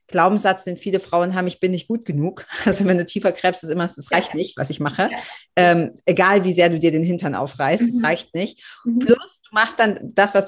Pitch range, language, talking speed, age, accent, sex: 165-205 Hz, German, 235 wpm, 30-49, German, female